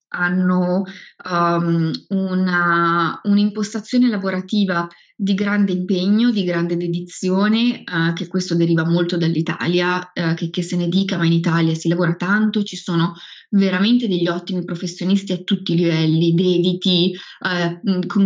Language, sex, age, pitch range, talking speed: Italian, female, 20-39, 180-225 Hz, 120 wpm